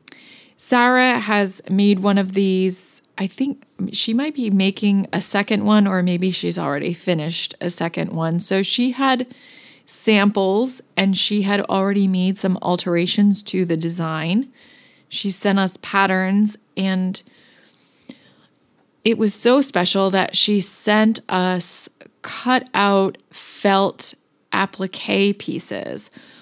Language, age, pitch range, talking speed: English, 30-49, 180-215 Hz, 125 wpm